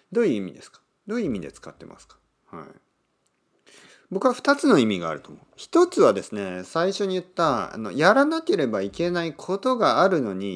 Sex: male